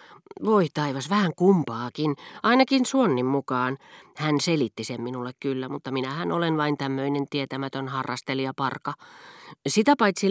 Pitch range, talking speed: 125-175 Hz, 130 wpm